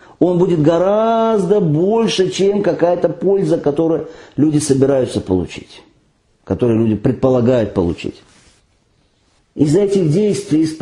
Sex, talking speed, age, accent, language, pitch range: male, 100 wpm, 50-69, native, Russian, 115-160 Hz